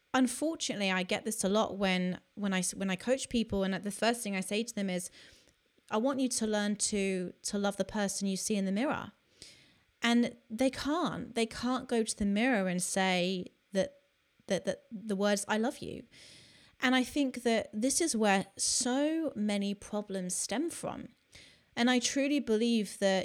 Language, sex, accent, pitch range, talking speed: English, female, British, 190-245 Hz, 190 wpm